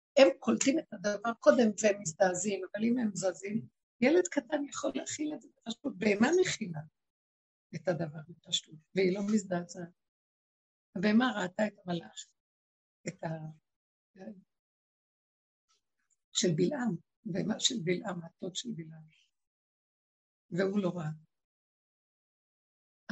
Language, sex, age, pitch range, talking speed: Hebrew, female, 60-79, 165-230 Hz, 105 wpm